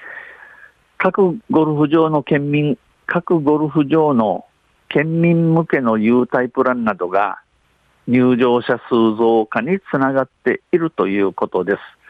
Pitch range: 120-155 Hz